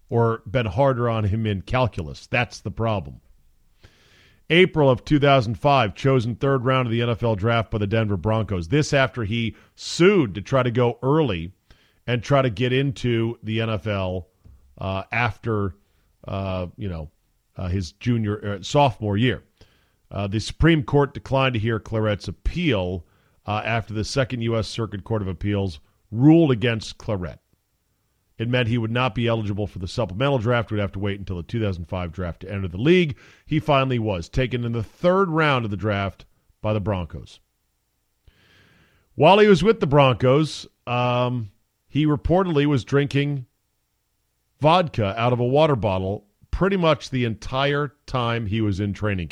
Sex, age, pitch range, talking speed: male, 40-59, 100-130 Hz, 165 wpm